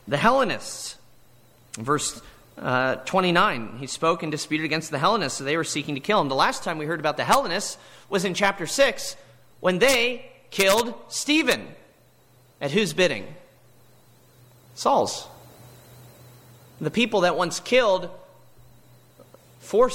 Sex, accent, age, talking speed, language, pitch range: male, American, 30-49, 140 wpm, English, 125-185 Hz